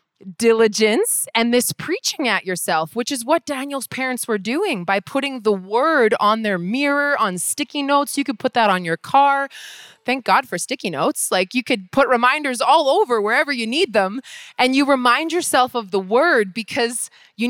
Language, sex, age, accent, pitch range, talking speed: English, female, 20-39, American, 190-255 Hz, 190 wpm